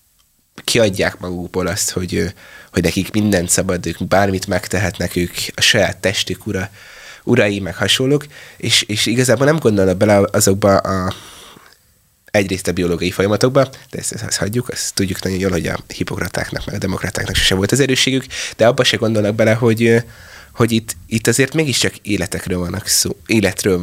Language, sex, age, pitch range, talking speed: Hungarian, male, 20-39, 90-110 Hz, 160 wpm